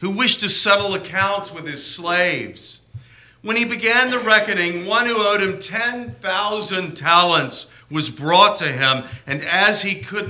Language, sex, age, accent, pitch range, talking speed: English, male, 50-69, American, 125-210 Hz, 155 wpm